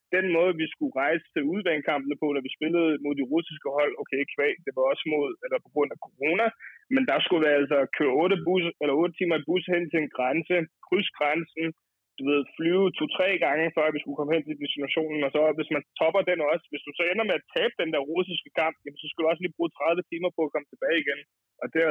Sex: male